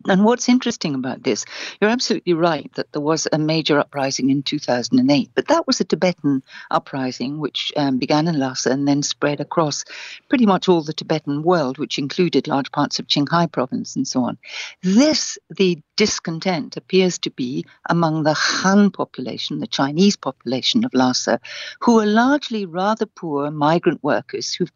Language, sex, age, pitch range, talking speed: English, female, 60-79, 140-200 Hz, 170 wpm